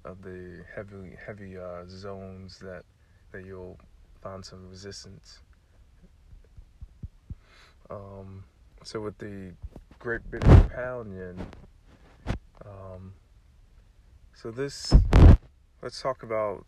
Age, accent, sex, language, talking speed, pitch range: 30-49, American, male, English, 85 wpm, 90-100 Hz